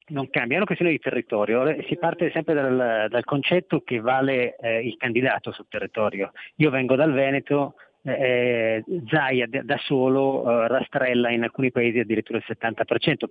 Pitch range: 120-145 Hz